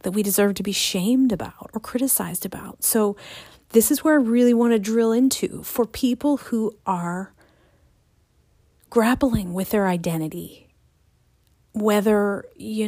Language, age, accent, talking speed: English, 40-59, American, 140 wpm